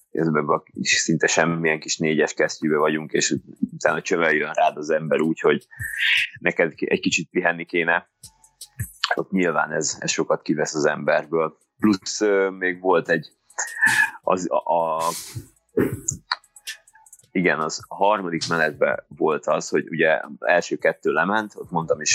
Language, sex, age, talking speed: Hungarian, male, 30-49, 135 wpm